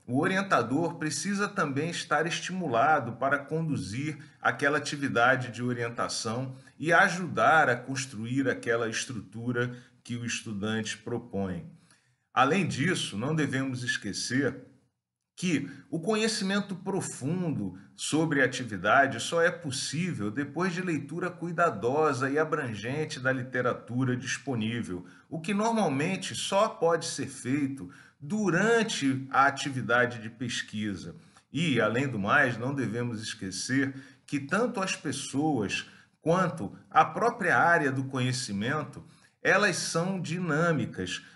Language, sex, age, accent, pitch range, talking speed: Portuguese, male, 40-59, Brazilian, 120-160 Hz, 115 wpm